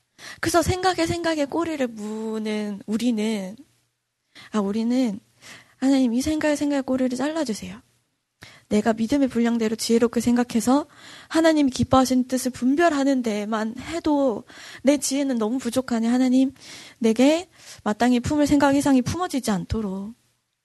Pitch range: 220-285 Hz